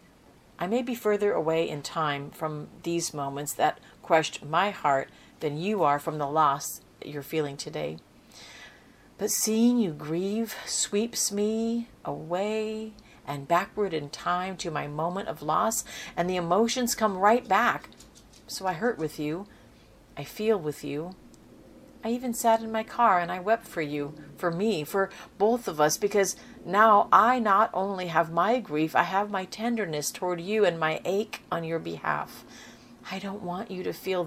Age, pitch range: 50-69, 165-225 Hz